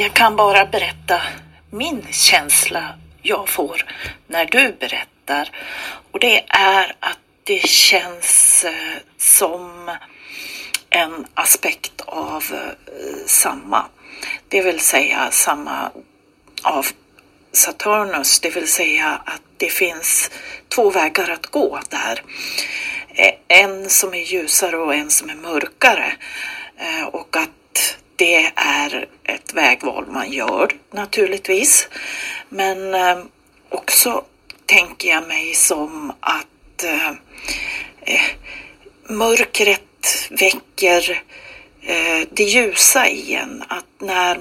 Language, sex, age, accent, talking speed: Swedish, female, 40-59, native, 95 wpm